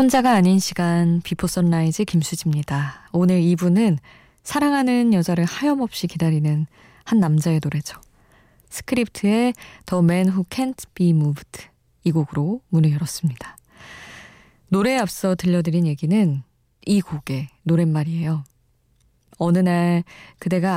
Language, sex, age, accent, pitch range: Korean, female, 20-39, native, 150-195 Hz